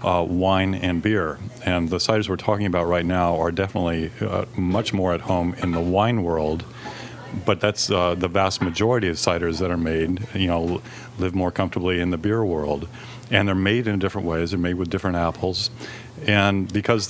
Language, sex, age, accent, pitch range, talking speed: English, male, 40-59, American, 90-105 Hz, 195 wpm